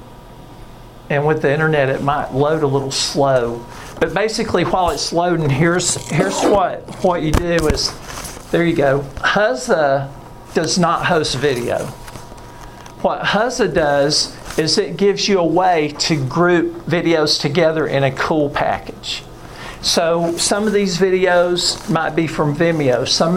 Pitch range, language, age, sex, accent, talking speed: 145-185 Hz, English, 50-69, male, American, 145 wpm